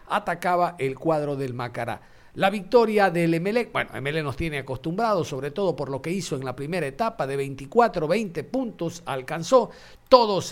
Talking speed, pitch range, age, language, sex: 170 wpm, 145-195 Hz, 50-69, Spanish, male